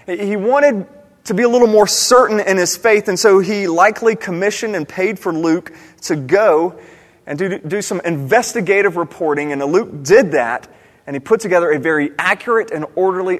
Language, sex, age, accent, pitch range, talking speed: English, male, 30-49, American, 150-220 Hz, 185 wpm